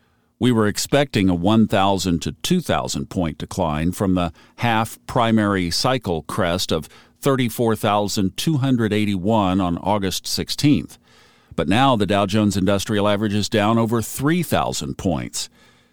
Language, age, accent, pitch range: English, 50-69, American, 95-125 Hz